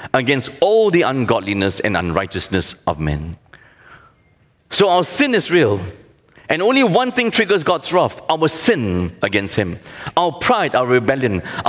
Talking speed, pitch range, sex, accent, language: 150 wpm, 110-185 Hz, male, Malaysian, English